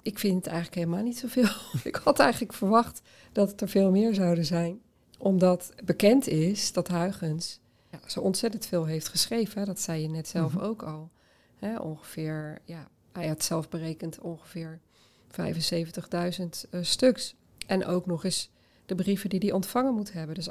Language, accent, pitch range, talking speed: Dutch, Dutch, 165-195 Hz, 175 wpm